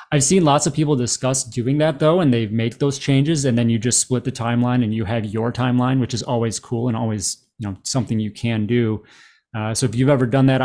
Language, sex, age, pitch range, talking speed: English, male, 30-49, 115-135 Hz, 255 wpm